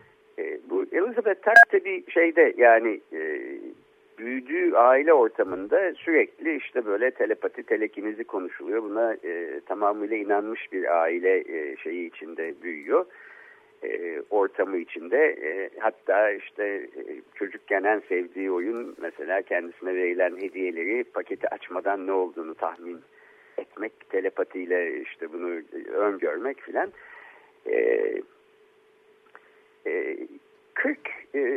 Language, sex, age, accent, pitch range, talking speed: Turkish, male, 50-69, native, 345-440 Hz, 100 wpm